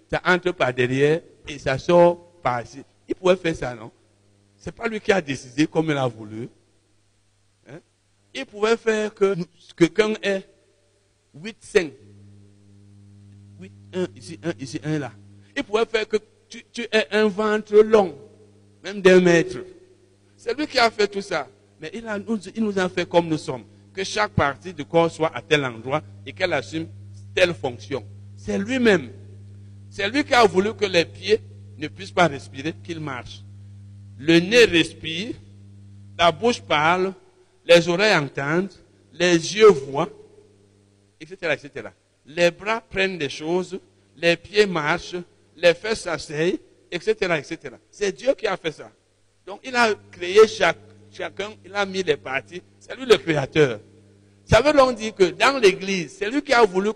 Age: 60-79